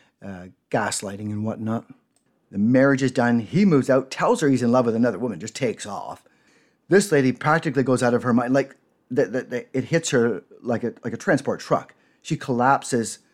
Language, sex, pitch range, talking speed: English, male, 120-145 Hz, 185 wpm